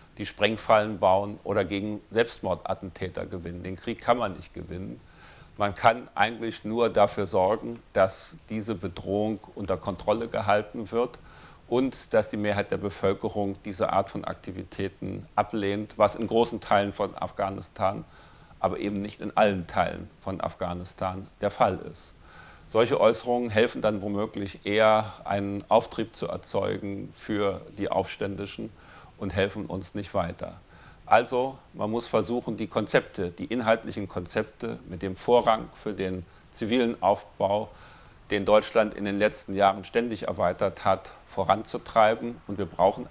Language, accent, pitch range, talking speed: German, German, 95-110 Hz, 140 wpm